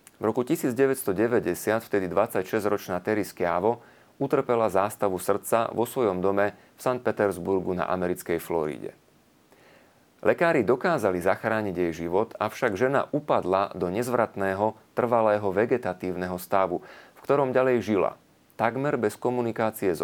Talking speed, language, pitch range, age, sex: 120 wpm, Slovak, 95-115 Hz, 30-49, male